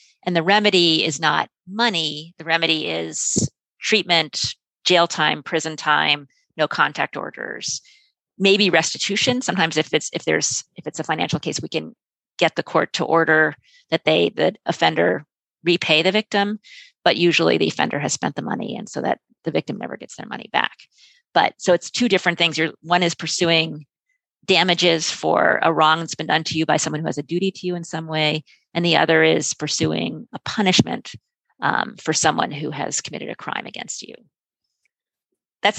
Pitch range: 160-200 Hz